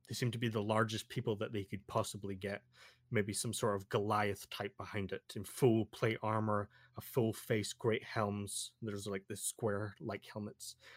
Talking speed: 190 wpm